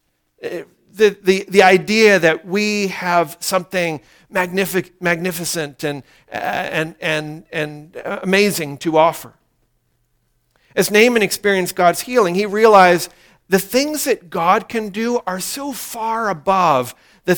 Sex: male